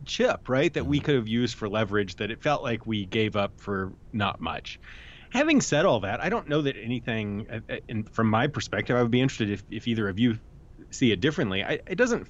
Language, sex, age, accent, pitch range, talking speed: English, male, 30-49, American, 110-140 Hz, 230 wpm